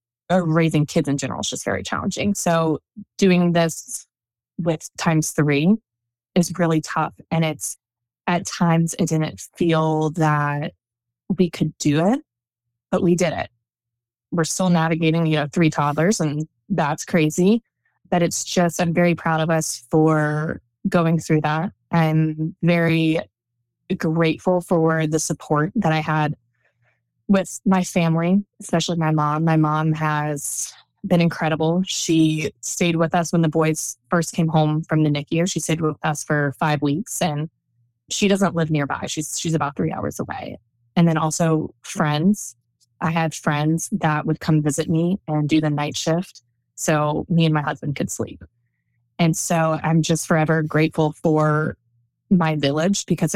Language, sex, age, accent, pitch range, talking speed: English, female, 20-39, American, 150-170 Hz, 155 wpm